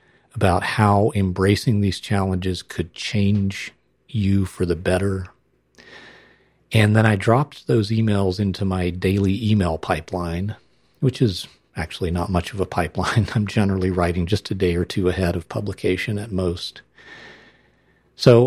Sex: male